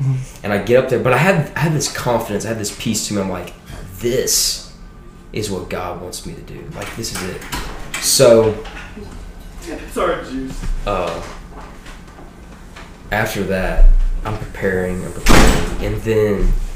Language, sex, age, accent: English, male, 20-39, American